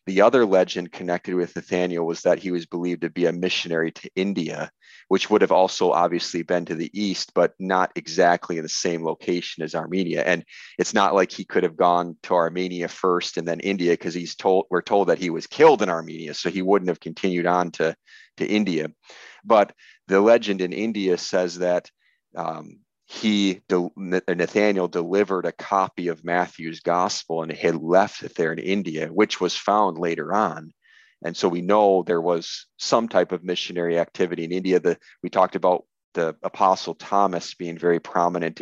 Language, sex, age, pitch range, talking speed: English, male, 30-49, 85-95 Hz, 185 wpm